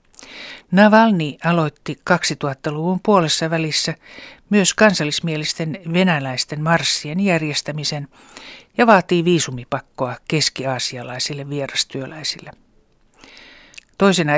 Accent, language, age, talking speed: native, Finnish, 60-79, 65 wpm